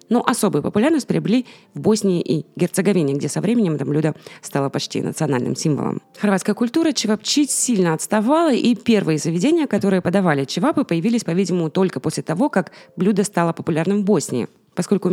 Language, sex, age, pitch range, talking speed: Russian, female, 20-39, 165-220 Hz, 160 wpm